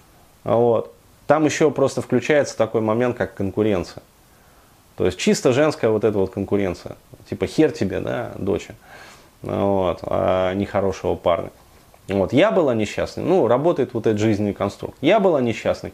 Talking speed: 140 wpm